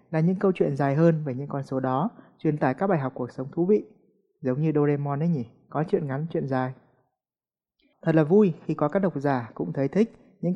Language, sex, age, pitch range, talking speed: Vietnamese, male, 20-39, 135-175 Hz, 240 wpm